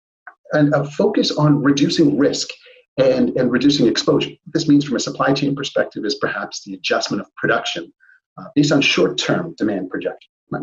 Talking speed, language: 175 wpm, English